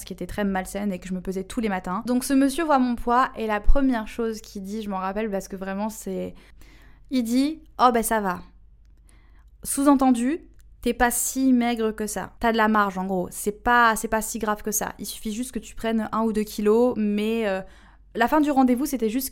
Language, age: French, 20-39